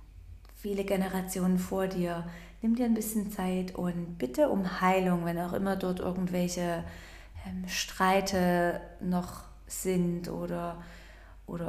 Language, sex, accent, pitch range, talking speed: German, female, German, 170-200 Hz, 120 wpm